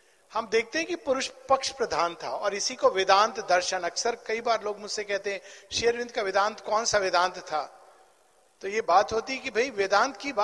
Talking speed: 185 wpm